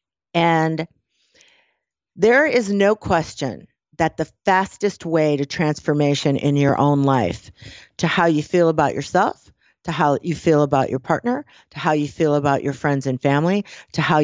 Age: 50-69